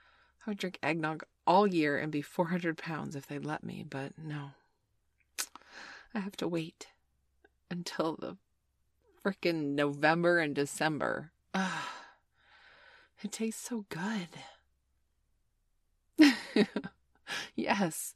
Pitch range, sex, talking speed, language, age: 140-185 Hz, female, 100 wpm, English, 30-49